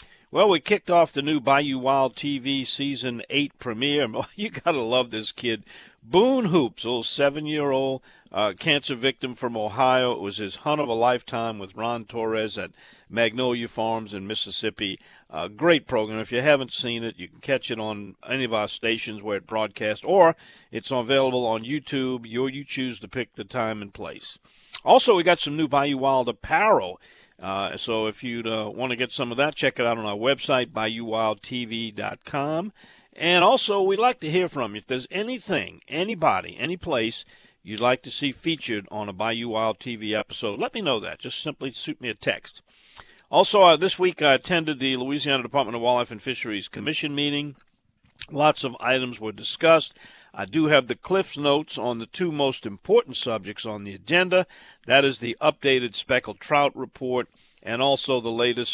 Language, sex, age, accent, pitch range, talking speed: English, male, 50-69, American, 110-145 Hz, 190 wpm